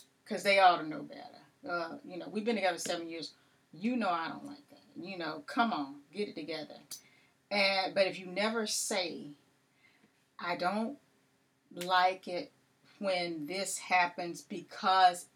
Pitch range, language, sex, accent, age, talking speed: 170-210 Hz, English, female, American, 40-59, 160 wpm